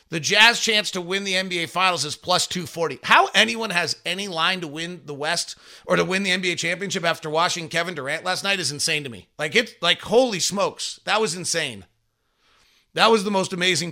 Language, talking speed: English, 210 wpm